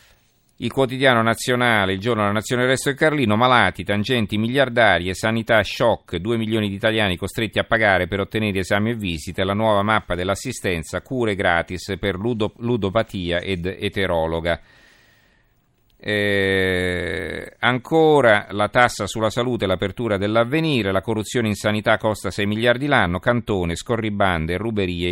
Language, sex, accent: Italian, male, native